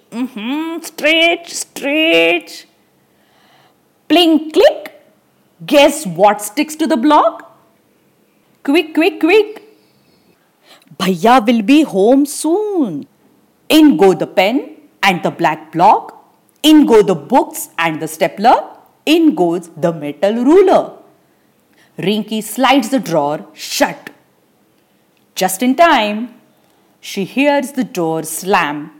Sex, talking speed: female, 110 wpm